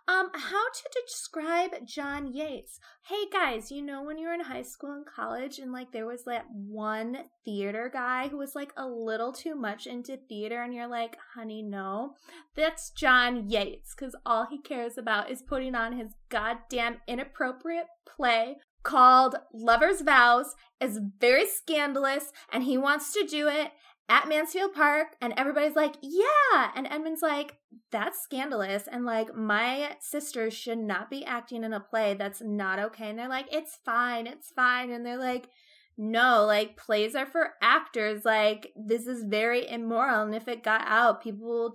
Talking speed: 175 wpm